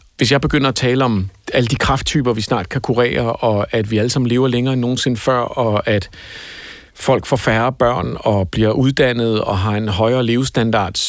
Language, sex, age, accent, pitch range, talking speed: Danish, male, 50-69, native, 120-150 Hz, 200 wpm